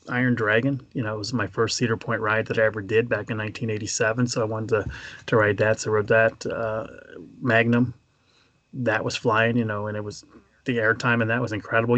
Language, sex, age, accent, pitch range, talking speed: English, male, 30-49, American, 110-125 Hz, 225 wpm